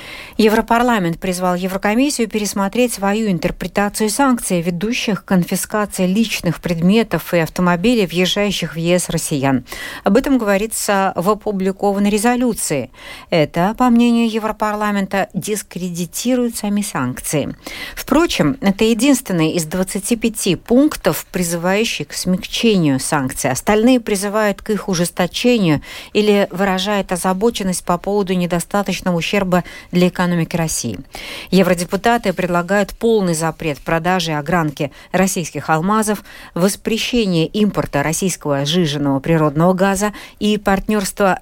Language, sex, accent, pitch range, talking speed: Russian, female, native, 170-215 Hz, 105 wpm